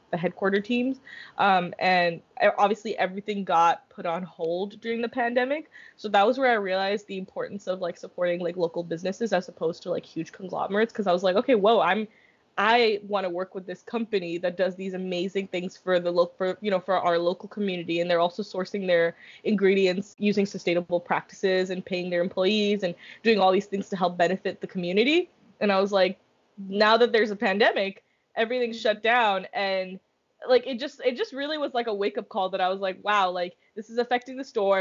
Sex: female